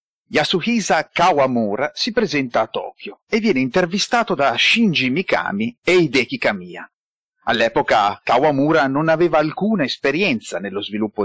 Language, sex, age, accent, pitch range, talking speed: Italian, male, 30-49, native, 125-190 Hz, 125 wpm